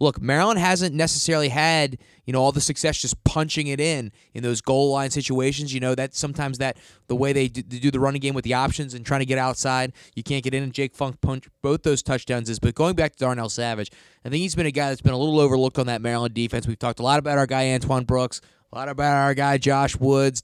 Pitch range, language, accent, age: 120-145 Hz, English, American, 20-39